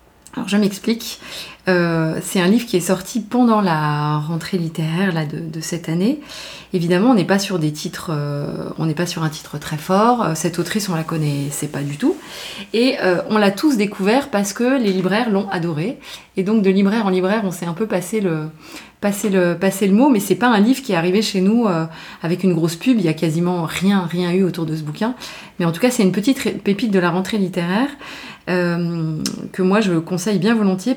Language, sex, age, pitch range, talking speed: French, female, 20-39, 175-215 Hz, 225 wpm